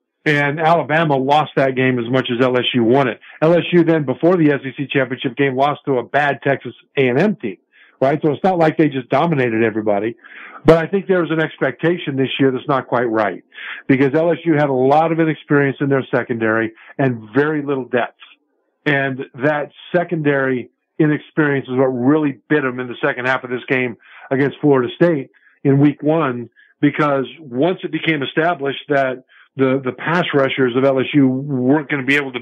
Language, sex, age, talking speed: English, male, 50-69, 190 wpm